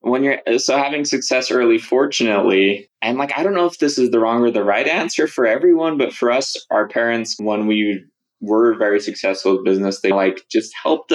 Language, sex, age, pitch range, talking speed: English, male, 20-39, 100-120 Hz, 210 wpm